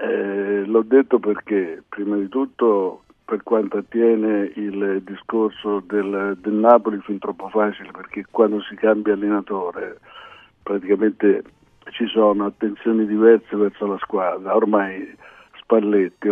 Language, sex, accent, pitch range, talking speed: Italian, male, native, 100-115 Hz, 120 wpm